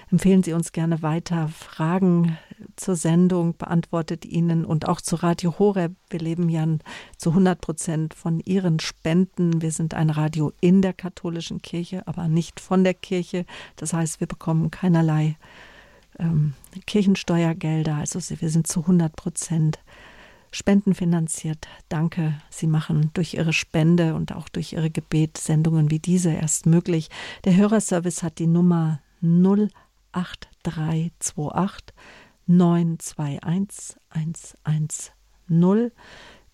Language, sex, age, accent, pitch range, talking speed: German, female, 50-69, German, 160-180 Hz, 125 wpm